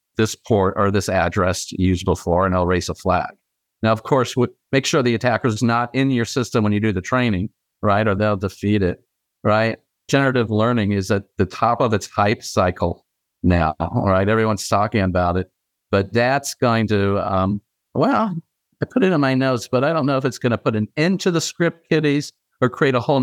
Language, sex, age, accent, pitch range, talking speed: English, male, 50-69, American, 95-120 Hz, 215 wpm